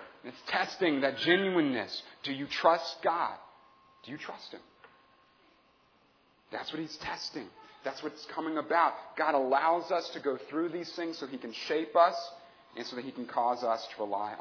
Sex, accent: male, American